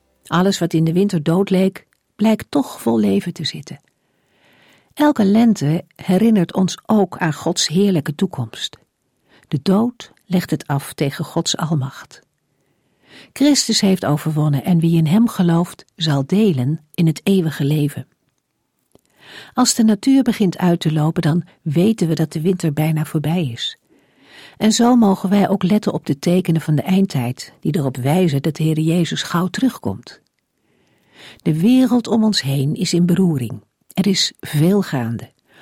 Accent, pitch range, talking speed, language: Dutch, 150-195 Hz, 155 wpm, Dutch